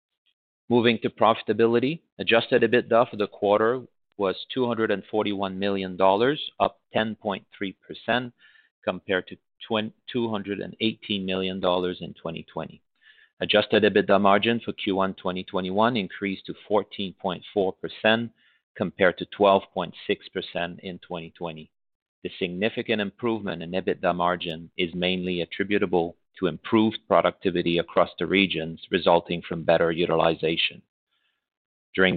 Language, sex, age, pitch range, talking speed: English, male, 40-59, 90-105 Hz, 100 wpm